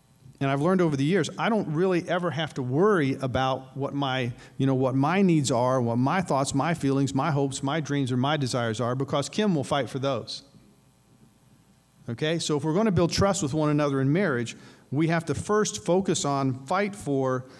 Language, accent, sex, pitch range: English, American, male, 135-180 Hz